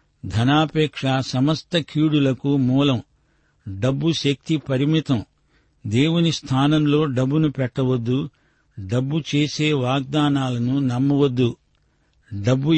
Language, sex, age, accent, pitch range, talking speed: Telugu, male, 60-79, native, 125-150 Hz, 75 wpm